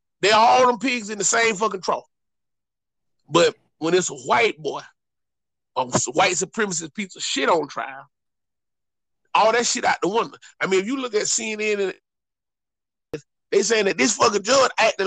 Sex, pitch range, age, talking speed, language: male, 175-235 Hz, 30-49, 175 wpm, English